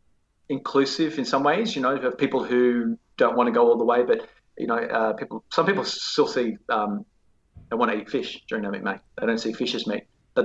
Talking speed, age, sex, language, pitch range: 240 wpm, 30-49, male, English, 110-145 Hz